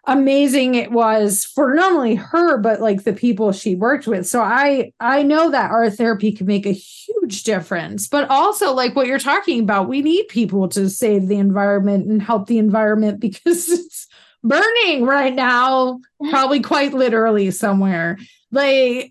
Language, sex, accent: English, female, American